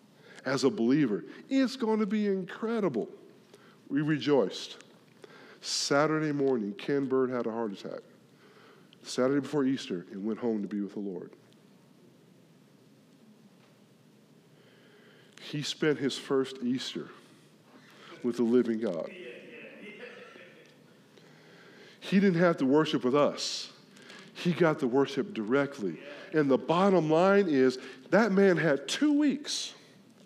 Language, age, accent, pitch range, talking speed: English, 50-69, American, 130-195 Hz, 120 wpm